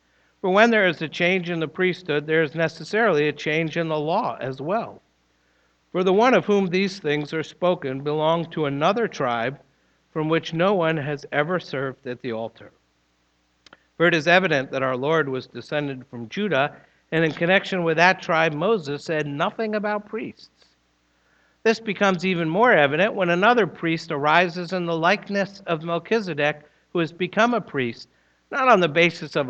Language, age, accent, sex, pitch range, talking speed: English, 60-79, American, male, 115-180 Hz, 180 wpm